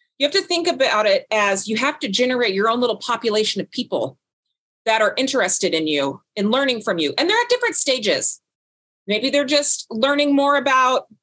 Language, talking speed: English, 200 wpm